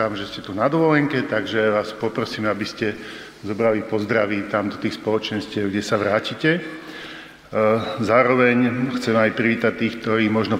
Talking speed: 145 wpm